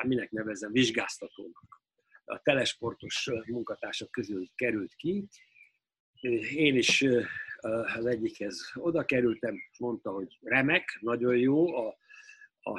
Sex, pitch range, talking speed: male, 120-165 Hz, 105 wpm